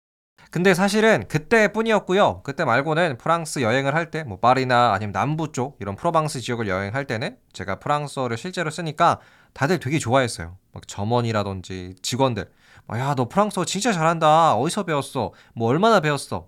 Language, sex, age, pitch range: Korean, male, 20-39, 115-180 Hz